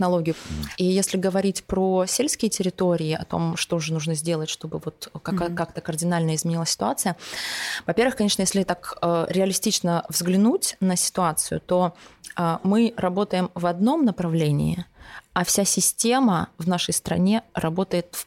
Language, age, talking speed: Russian, 20-39, 130 wpm